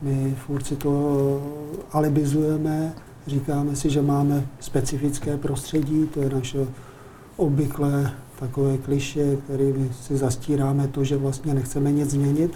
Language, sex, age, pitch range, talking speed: Czech, male, 40-59, 135-150 Hz, 120 wpm